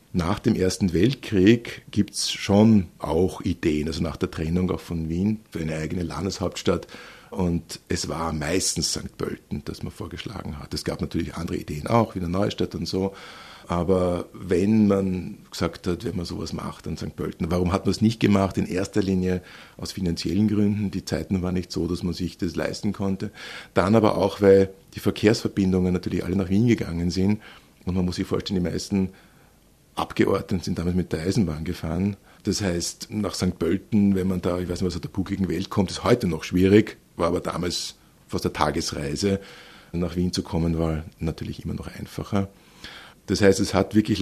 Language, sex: German, male